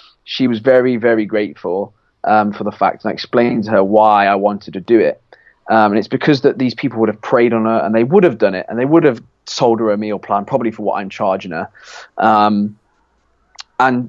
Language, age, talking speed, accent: English, 20-39, 235 wpm, British